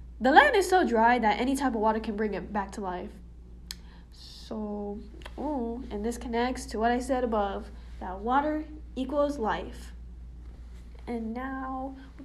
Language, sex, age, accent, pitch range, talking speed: English, female, 10-29, American, 190-245 Hz, 160 wpm